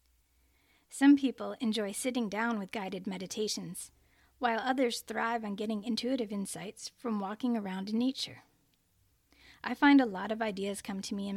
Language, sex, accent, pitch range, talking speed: English, female, American, 200-240 Hz, 160 wpm